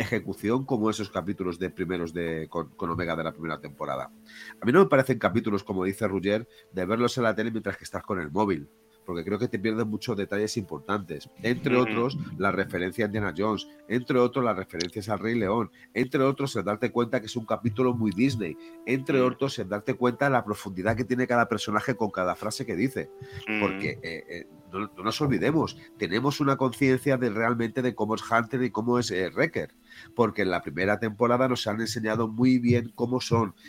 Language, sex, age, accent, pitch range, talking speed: Spanish, male, 30-49, Spanish, 100-125 Hz, 205 wpm